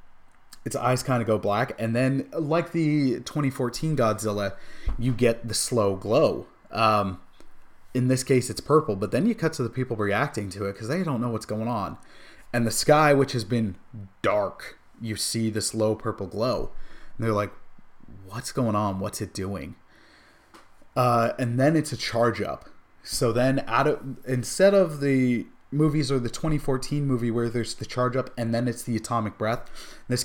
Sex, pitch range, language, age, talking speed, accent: male, 110-130 Hz, English, 20-39, 185 wpm, American